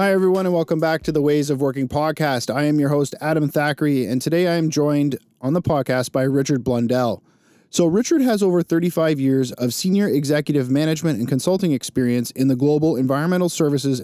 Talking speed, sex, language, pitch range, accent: 195 wpm, male, English, 130-160 Hz, American